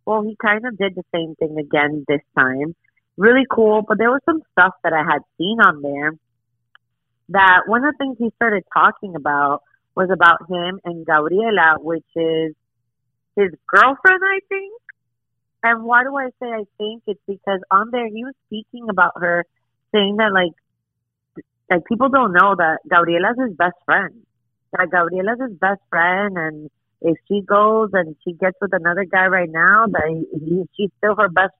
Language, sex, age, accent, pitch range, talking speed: English, female, 30-49, American, 155-220 Hz, 180 wpm